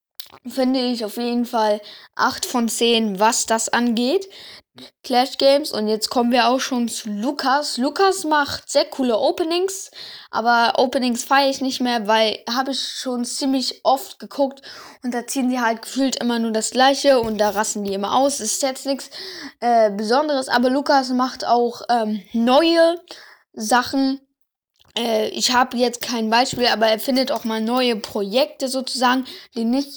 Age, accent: 10-29, German